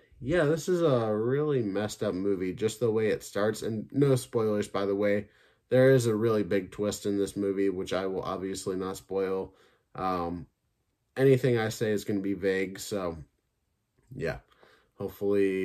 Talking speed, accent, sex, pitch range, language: 175 wpm, American, male, 95-105 Hz, English